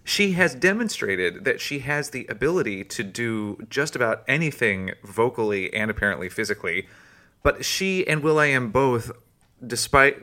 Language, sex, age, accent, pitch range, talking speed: English, male, 30-49, American, 110-150 Hz, 145 wpm